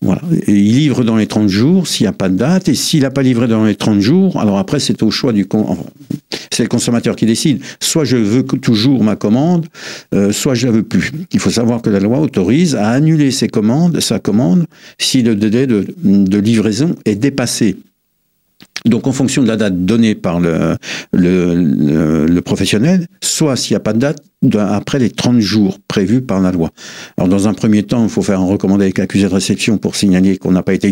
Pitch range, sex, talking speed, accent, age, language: 95-120 Hz, male, 230 wpm, French, 60-79, French